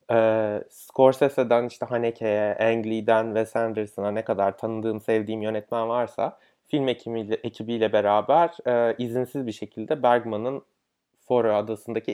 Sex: male